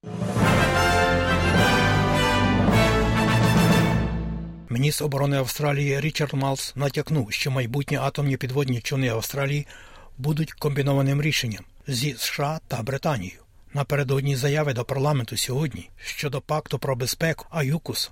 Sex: male